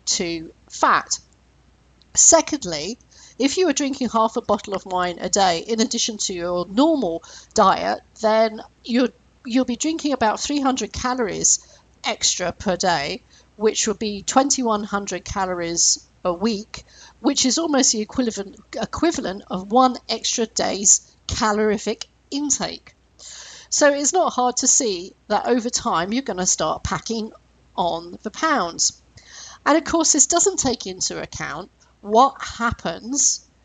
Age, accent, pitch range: 50-69, British, 190-265 Hz